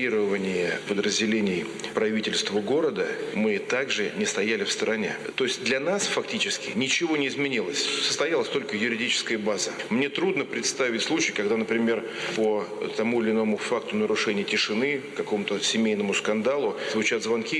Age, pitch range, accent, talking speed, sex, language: 40-59, 110-180 Hz, native, 135 wpm, male, Russian